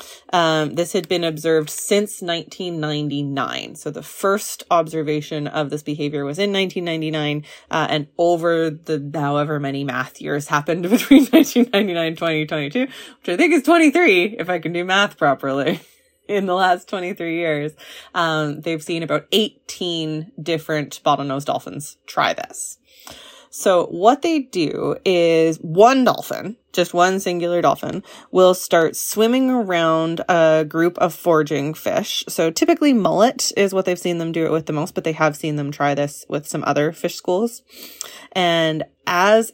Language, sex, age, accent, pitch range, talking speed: English, female, 20-39, American, 150-185 Hz, 155 wpm